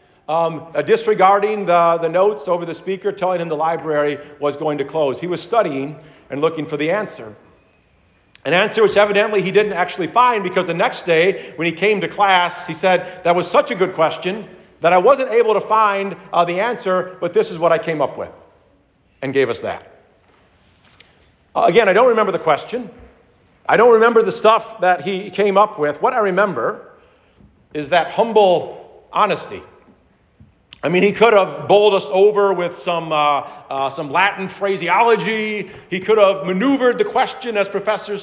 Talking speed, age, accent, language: 185 wpm, 50-69, American, English